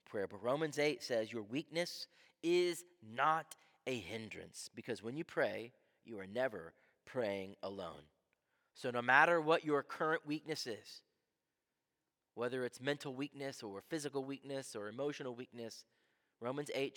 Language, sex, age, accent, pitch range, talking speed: English, male, 30-49, American, 125-165 Hz, 140 wpm